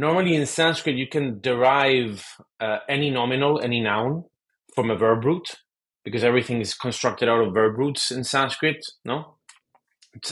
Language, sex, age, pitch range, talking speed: English, male, 30-49, 110-140 Hz, 155 wpm